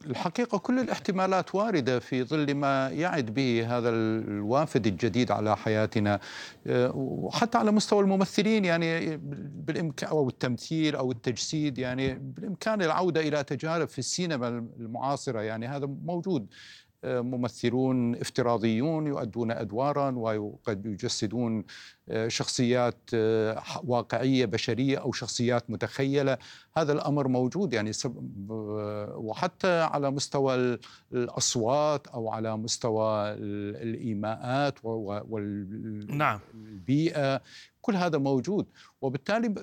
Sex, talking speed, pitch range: male, 95 wpm, 115-160 Hz